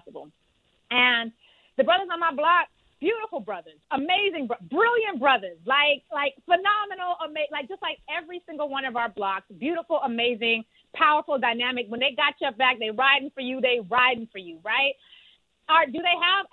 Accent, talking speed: American, 170 wpm